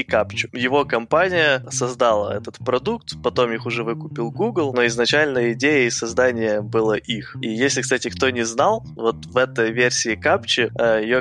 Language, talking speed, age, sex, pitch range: Ukrainian, 155 wpm, 20-39, male, 115-130 Hz